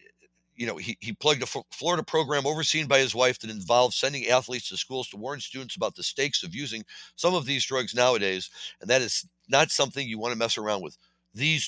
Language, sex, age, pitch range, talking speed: English, male, 60-79, 115-155 Hz, 220 wpm